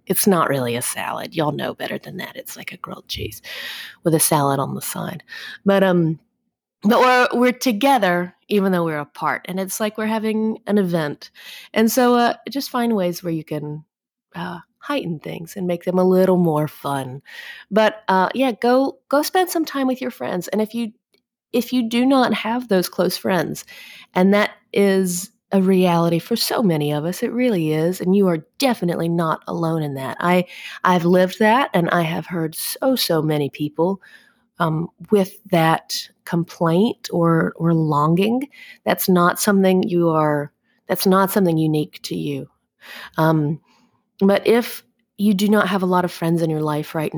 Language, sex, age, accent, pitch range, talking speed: English, female, 30-49, American, 165-225 Hz, 185 wpm